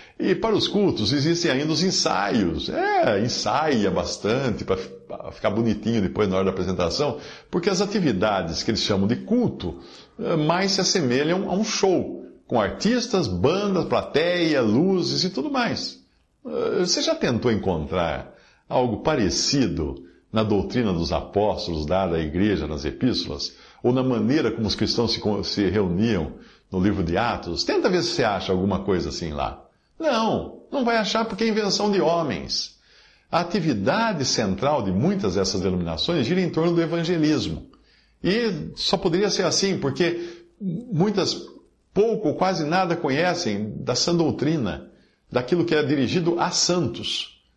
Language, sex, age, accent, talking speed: Portuguese, male, 60-79, Brazilian, 150 wpm